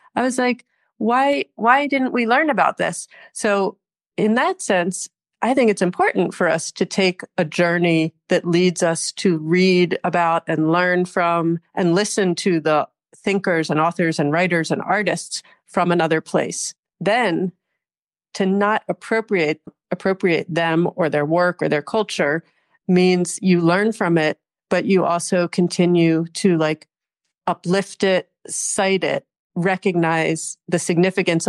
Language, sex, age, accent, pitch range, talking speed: English, female, 40-59, American, 165-200 Hz, 145 wpm